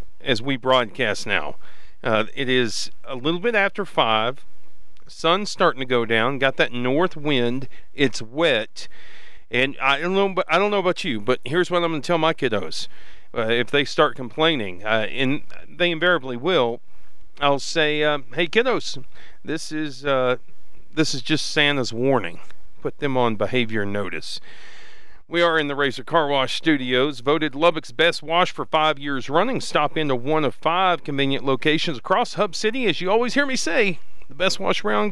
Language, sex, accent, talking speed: English, male, American, 180 wpm